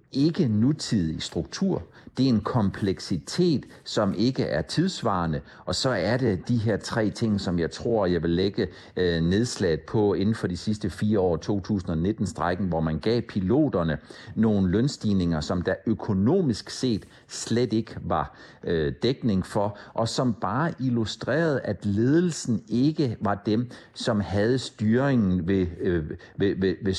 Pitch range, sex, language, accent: 90-115 Hz, male, Danish, native